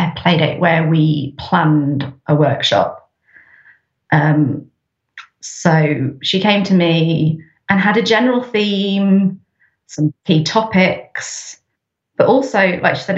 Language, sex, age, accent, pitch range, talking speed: English, female, 30-49, British, 160-195 Hz, 120 wpm